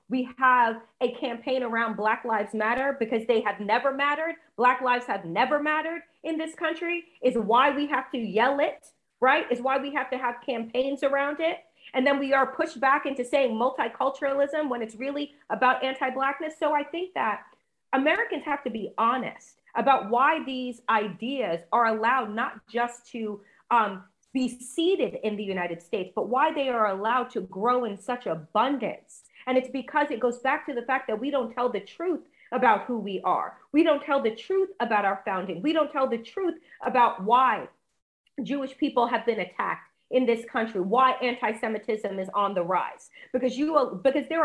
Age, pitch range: 30-49, 225-280 Hz